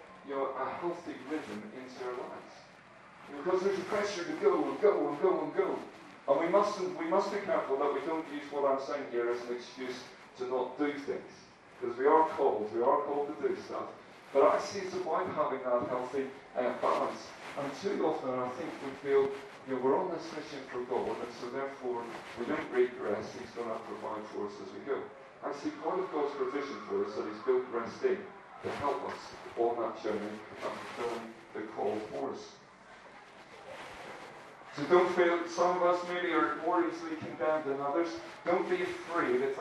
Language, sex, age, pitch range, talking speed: English, male, 40-59, 130-190 Hz, 205 wpm